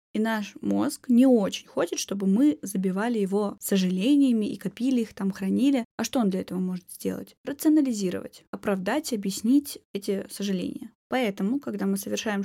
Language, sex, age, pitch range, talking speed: Russian, female, 20-39, 195-235 Hz, 155 wpm